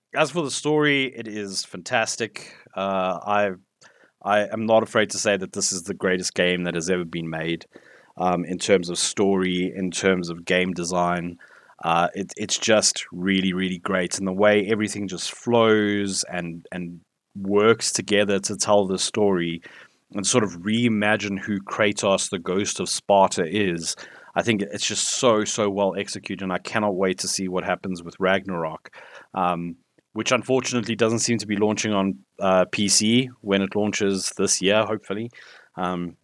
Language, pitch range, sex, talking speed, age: English, 95-110 Hz, male, 175 wpm, 30-49